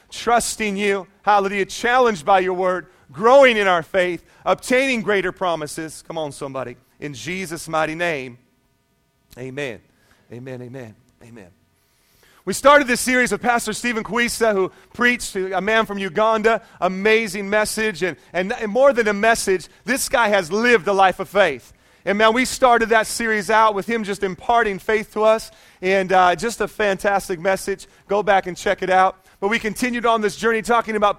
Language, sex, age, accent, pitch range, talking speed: English, male, 40-59, American, 190-235 Hz, 175 wpm